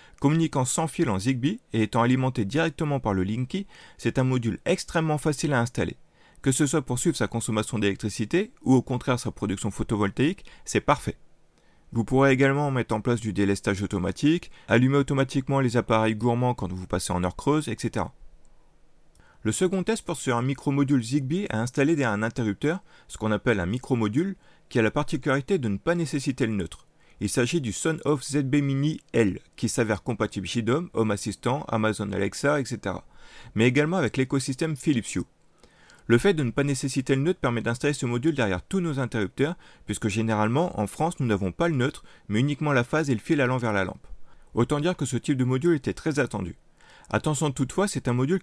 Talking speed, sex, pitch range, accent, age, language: 195 wpm, male, 110-145 Hz, French, 30-49, French